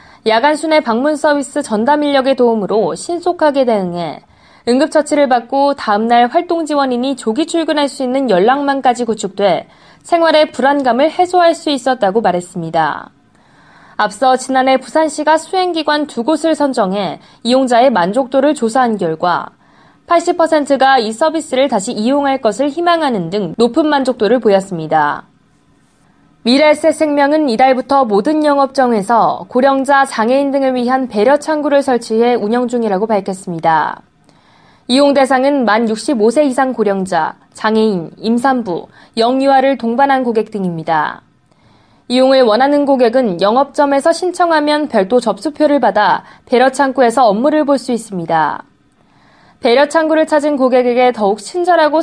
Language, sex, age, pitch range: Korean, female, 20-39, 225-295 Hz